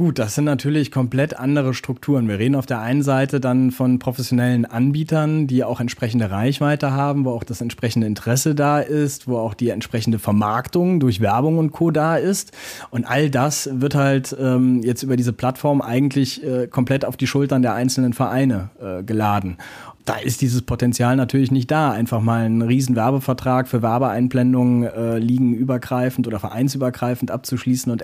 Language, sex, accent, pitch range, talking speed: German, male, German, 120-140 Hz, 175 wpm